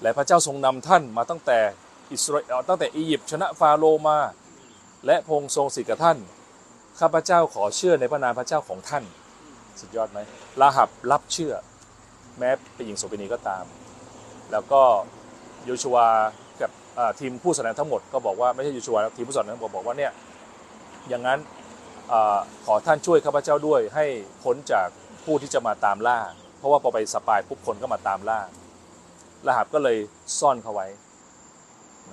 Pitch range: 110-150 Hz